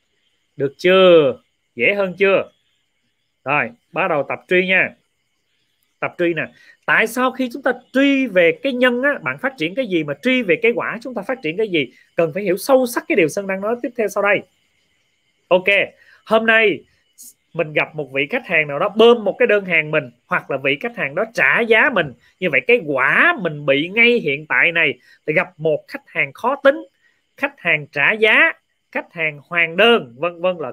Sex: male